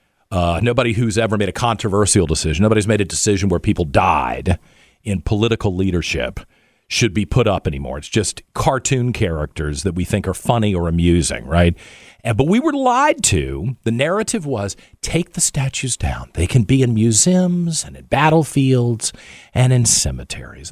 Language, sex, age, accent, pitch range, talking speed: English, male, 50-69, American, 90-130 Hz, 170 wpm